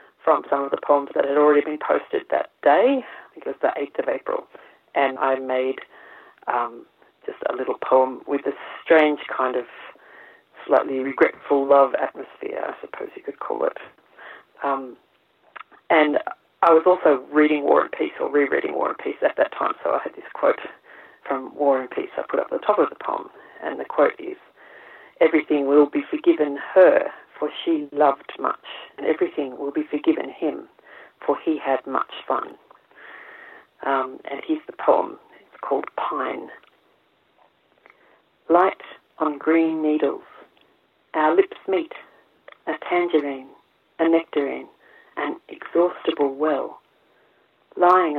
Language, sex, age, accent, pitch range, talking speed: English, female, 40-59, Australian, 140-185 Hz, 155 wpm